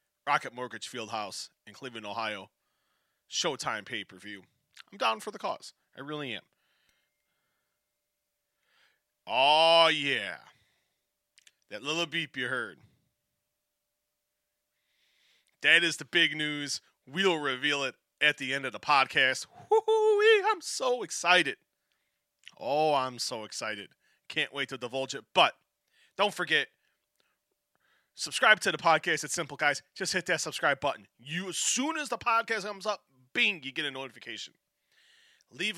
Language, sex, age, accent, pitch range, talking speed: English, male, 30-49, American, 130-175 Hz, 130 wpm